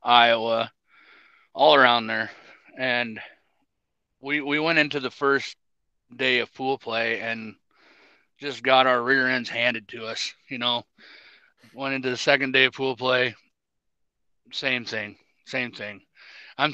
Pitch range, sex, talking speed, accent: 110-130 Hz, male, 140 wpm, American